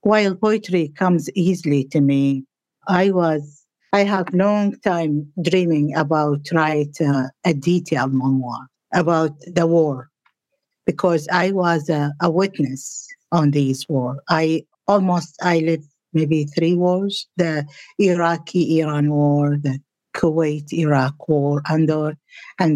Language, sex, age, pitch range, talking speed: English, female, 50-69, 150-185 Hz, 120 wpm